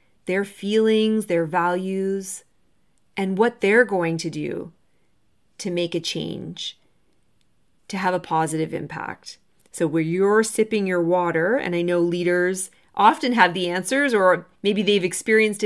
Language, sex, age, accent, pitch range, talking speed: English, female, 30-49, American, 175-210 Hz, 140 wpm